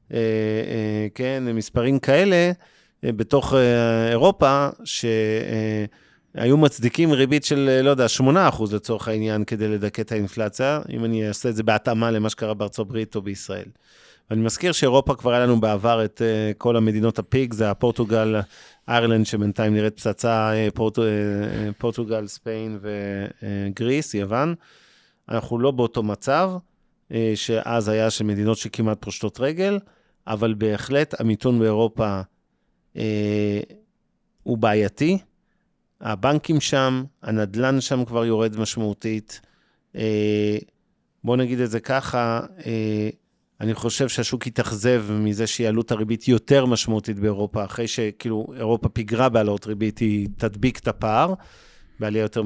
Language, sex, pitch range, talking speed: Hebrew, male, 110-130 Hz, 130 wpm